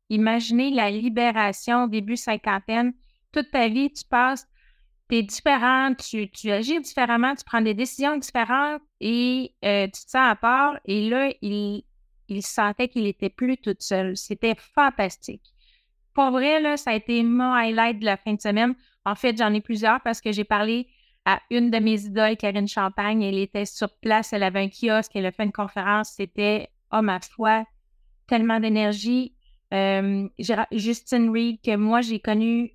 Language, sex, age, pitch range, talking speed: French, female, 30-49, 205-245 Hz, 175 wpm